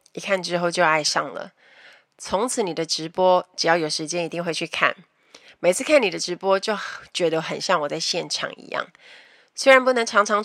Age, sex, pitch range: 30-49, female, 160-215 Hz